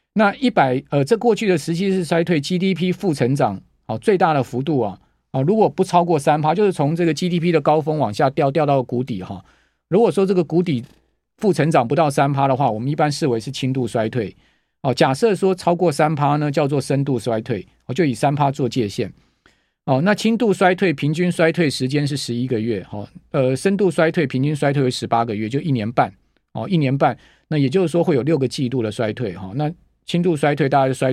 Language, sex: Chinese, male